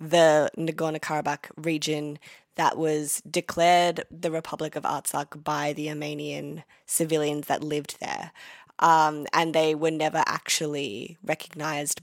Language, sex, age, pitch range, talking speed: English, female, 20-39, 150-170 Hz, 120 wpm